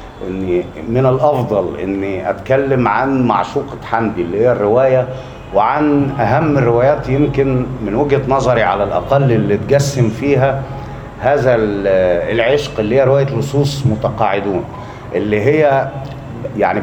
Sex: male